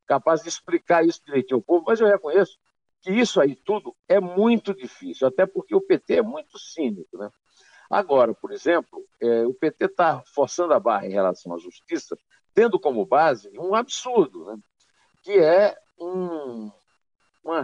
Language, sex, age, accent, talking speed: Portuguese, male, 60-79, Brazilian, 160 wpm